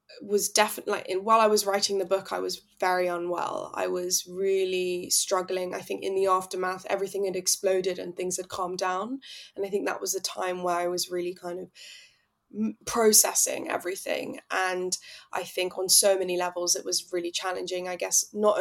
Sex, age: female, 20-39